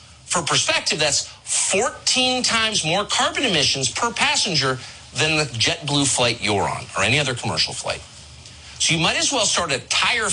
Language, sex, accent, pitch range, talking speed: English, male, American, 110-180 Hz, 170 wpm